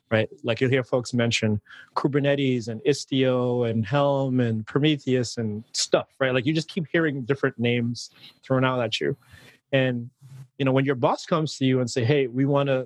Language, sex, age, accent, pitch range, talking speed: English, male, 30-49, American, 120-145 Hz, 190 wpm